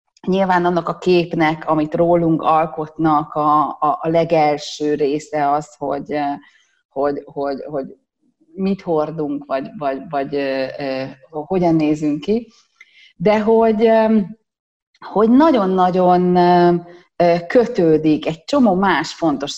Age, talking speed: 30-49, 105 wpm